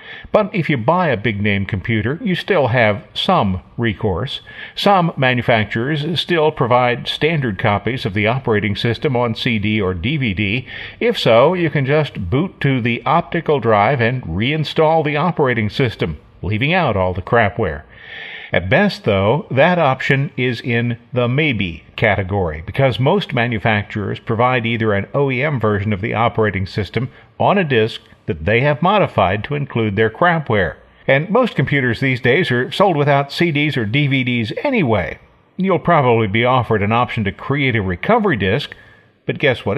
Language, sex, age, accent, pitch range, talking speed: English, male, 50-69, American, 110-150 Hz, 160 wpm